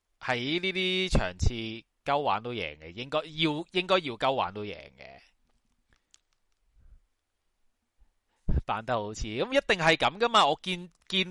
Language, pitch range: Chinese, 125-190 Hz